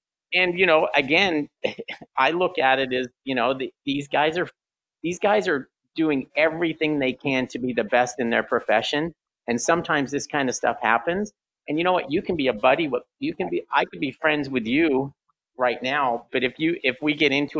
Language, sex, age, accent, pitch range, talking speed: English, male, 50-69, American, 120-150 Hz, 220 wpm